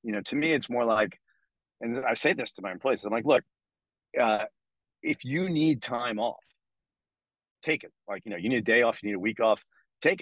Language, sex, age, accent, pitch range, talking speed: English, male, 30-49, American, 100-130 Hz, 230 wpm